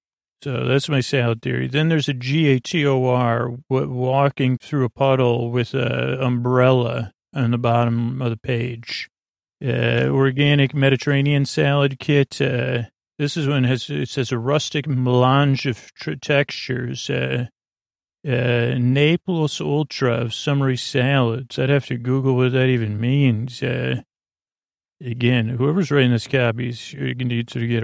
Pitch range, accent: 120-140 Hz, American